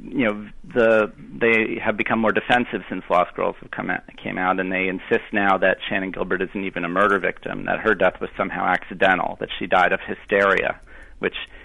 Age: 40-59